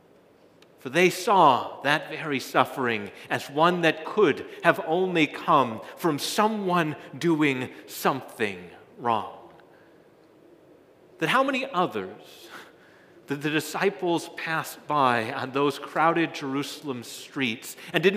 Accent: American